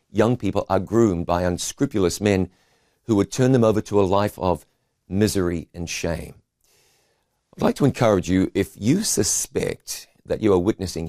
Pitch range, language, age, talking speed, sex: 85-110 Hz, English, 50-69, 170 wpm, male